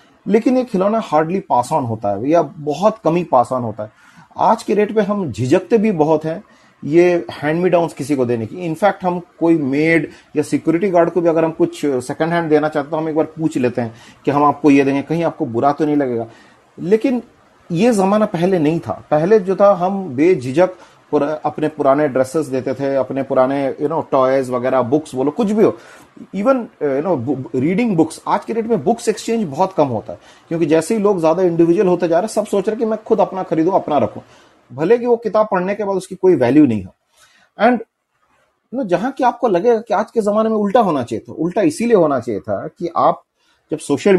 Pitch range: 145-205 Hz